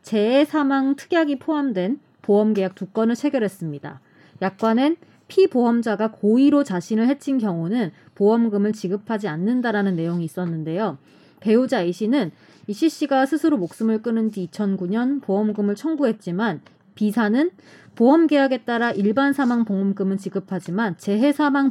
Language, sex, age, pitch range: Korean, female, 20-39, 195-265 Hz